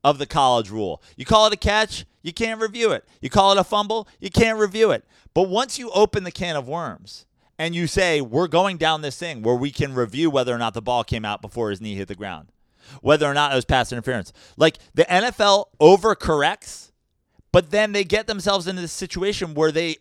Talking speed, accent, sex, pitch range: 230 wpm, American, male, 150-215 Hz